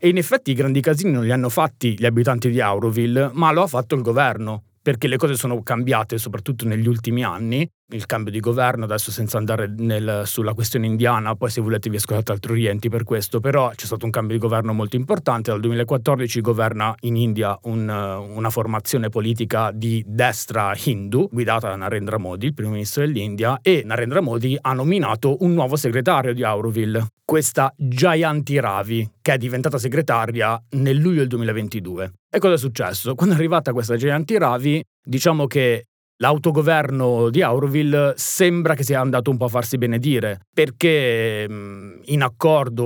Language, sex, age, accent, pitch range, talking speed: Italian, male, 30-49, native, 110-140 Hz, 175 wpm